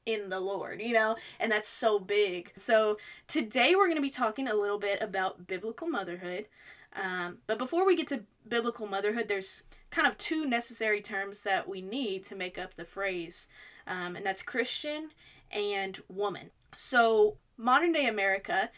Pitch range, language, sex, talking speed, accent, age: 190-245 Hz, English, female, 175 wpm, American, 20-39